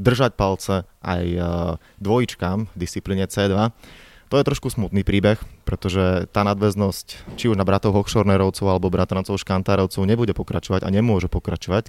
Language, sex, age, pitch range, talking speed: Slovak, male, 20-39, 95-110 Hz, 140 wpm